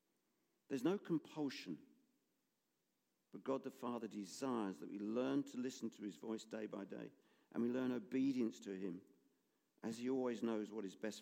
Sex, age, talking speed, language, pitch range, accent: male, 50-69, 170 wpm, English, 105-130 Hz, British